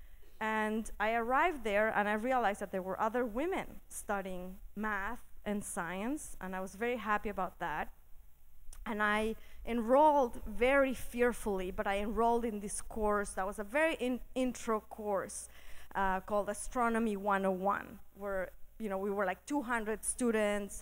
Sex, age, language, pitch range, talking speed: female, 20-39, English, 195-235 Hz, 155 wpm